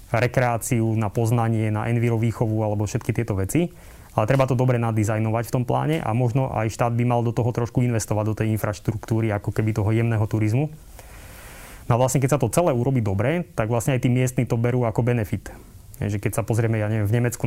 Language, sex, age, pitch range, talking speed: Slovak, male, 20-39, 110-125 Hz, 210 wpm